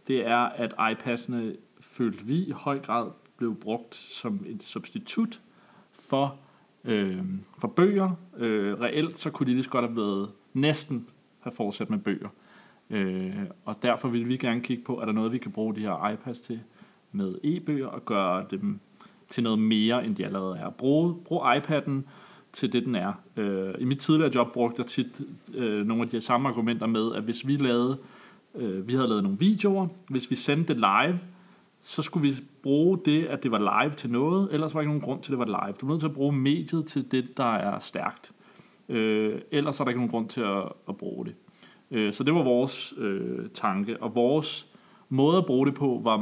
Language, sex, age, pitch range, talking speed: Danish, male, 30-49, 115-165 Hz, 205 wpm